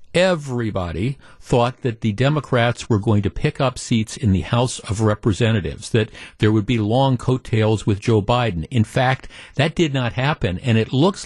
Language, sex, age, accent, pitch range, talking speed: English, male, 50-69, American, 105-125 Hz, 180 wpm